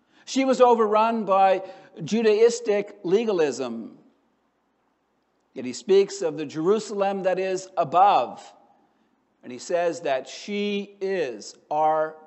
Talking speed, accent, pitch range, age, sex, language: 110 wpm, American, 180-220 Hz, 60-79, male, English